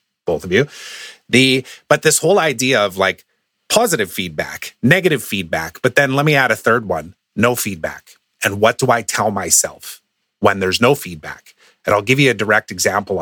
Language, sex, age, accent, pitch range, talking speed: English, male, 30-49, American, 95-135 Hz, 185 wpm